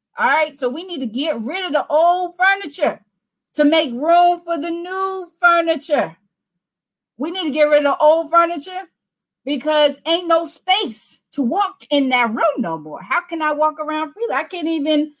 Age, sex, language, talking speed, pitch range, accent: 40-59, female, English, 190 wpm, 215-305 Hz, American